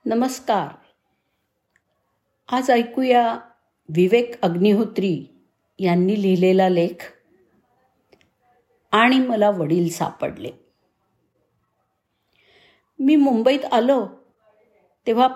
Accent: native